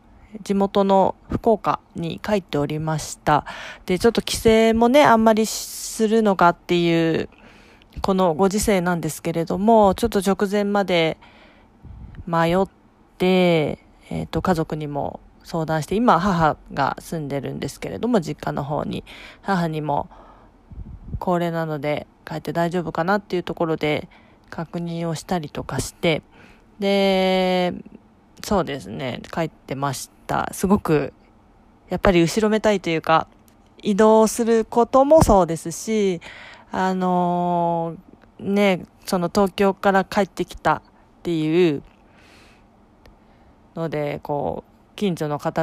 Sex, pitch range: female, 155-200 Hz